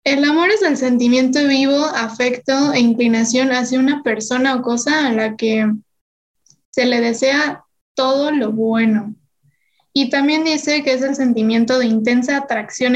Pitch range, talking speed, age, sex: 230-265 Hz, 155 wpm, 10-29, female